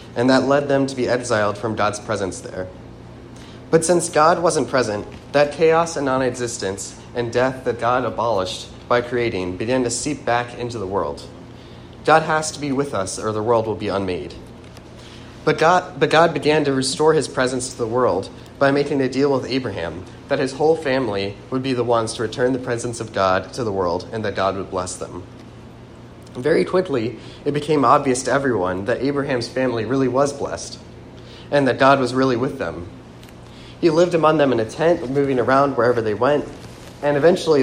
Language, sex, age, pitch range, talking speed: English, male, 30-49, 115-140 Hz, 190 wpm